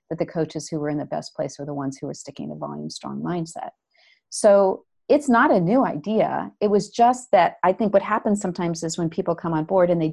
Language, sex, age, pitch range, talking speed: English, female, 40-59, 165-205 Hz, 250 wpm